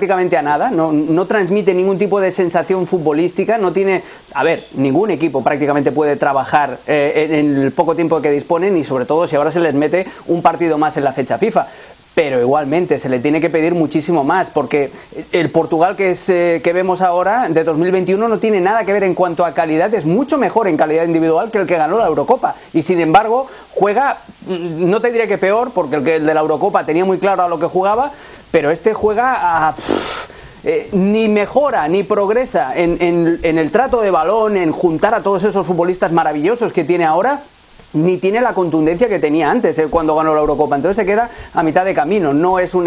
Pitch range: 160-205 Hz